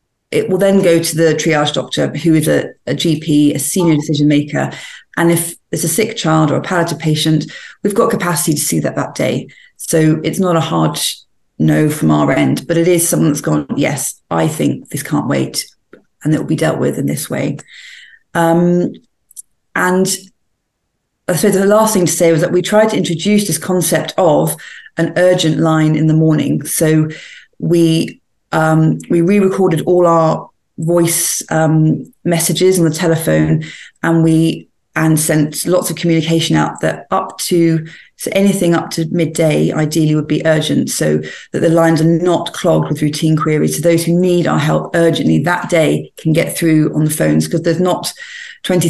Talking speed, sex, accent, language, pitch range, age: 185 wpm, female, British, English, 155-175 Hz, 40-59